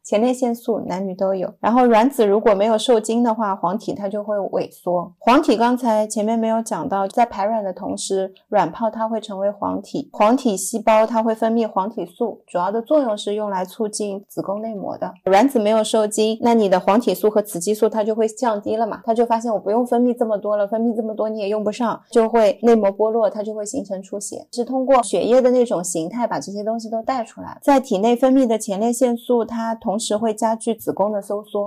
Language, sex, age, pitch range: Chinese, female, 30-49, 195-230 Hz